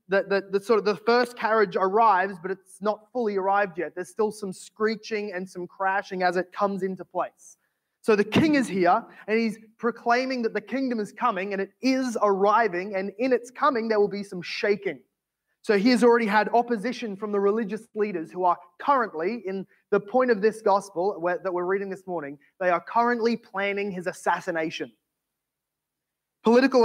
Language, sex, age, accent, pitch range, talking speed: English, male, 20-39, Australian, 190-230 Hz, 190 wpm